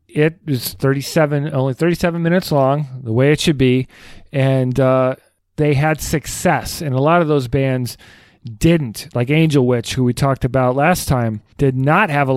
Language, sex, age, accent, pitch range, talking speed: English, male, 40-59, American, 120-150 Hz, 180 wpm